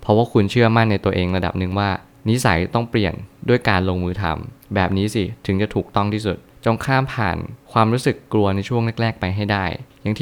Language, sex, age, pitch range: Thai, male, 20-39, 95-115 Hz